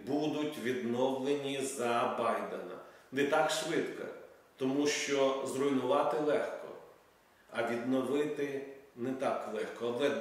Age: 40-59